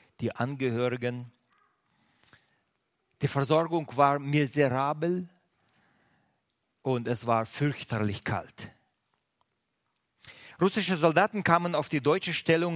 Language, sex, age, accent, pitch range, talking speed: German, male, 50-69, German, 120-160 Hz, 85 wpm